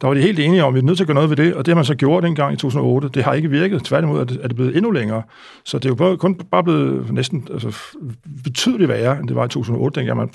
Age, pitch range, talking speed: 60-79, 125-160 Hz, 305 wpm